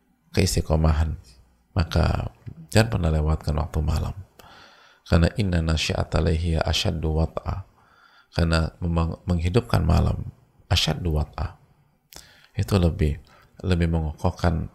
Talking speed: 85 wpm